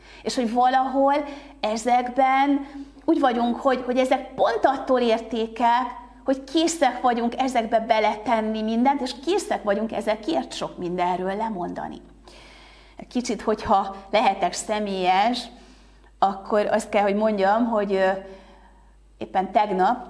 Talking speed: 110 wpm